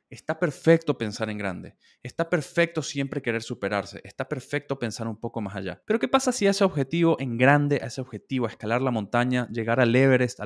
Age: 20-39